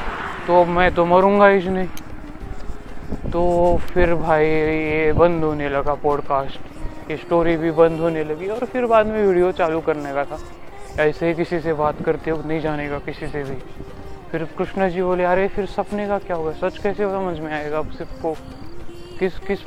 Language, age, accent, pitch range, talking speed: Marathi, 20-39, native, 155-195 Hz, 120 wpm